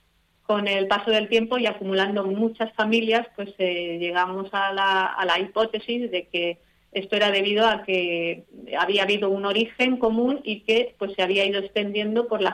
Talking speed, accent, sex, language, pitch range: 180 wpm, Spanish, female, Spanish, 185-205 Hz